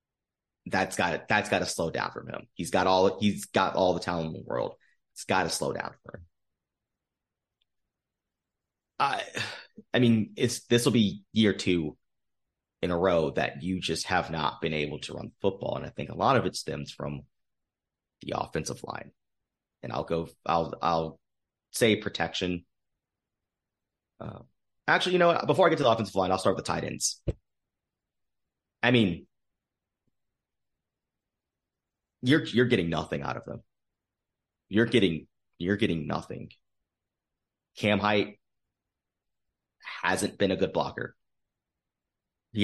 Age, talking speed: 30-49, 155 wpm